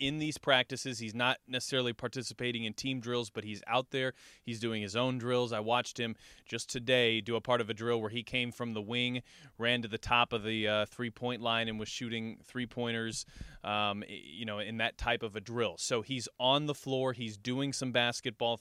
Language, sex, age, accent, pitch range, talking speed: English, male, 20-39, American, 110-125 Hz, 215 wpm